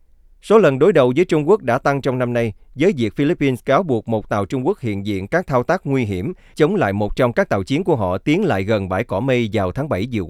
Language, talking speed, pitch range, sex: Vietnamese, 275 wpm, 100-145 Hz, male